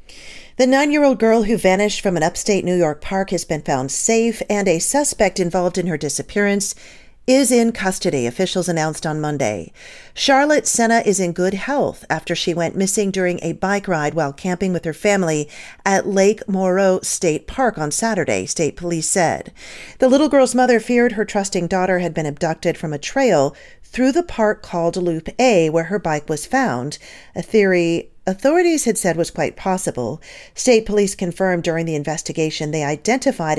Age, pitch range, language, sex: 40-59, 165-230 Hz, English, female